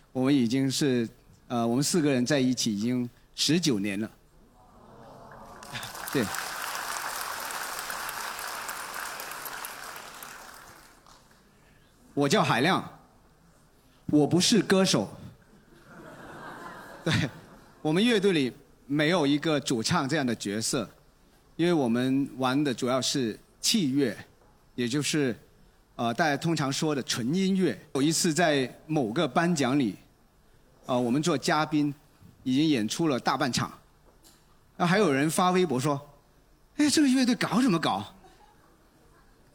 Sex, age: male, 40-59